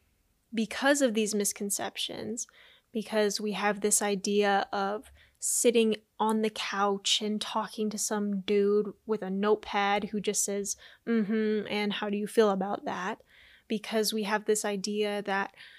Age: 10-29